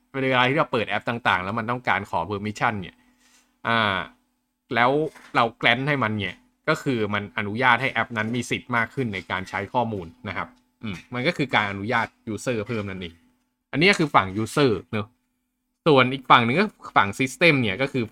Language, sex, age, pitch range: Thai, male, 20-39, 105-145 Hz